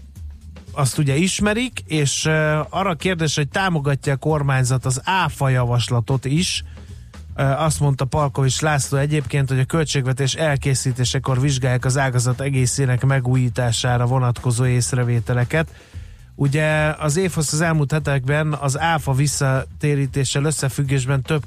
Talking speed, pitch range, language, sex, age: 115 wpm, 130-150 Hz, Hungarian, male, 30-49